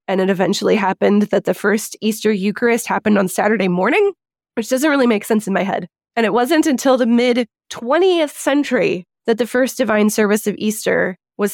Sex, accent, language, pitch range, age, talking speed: female, American, English, 195-250 Hz, 20-39, 185 wpm